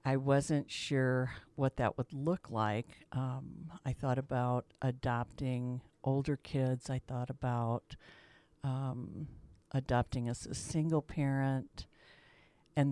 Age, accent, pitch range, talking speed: 60-79, American, 115-140 Hz, 115 wpm